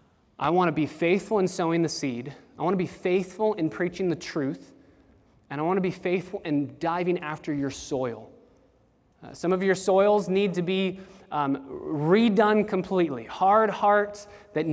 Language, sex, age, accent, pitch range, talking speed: English, male, 20-39, American, 155-195 Hz, 175 wpm